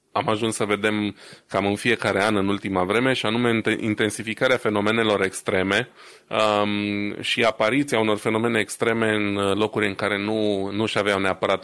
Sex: male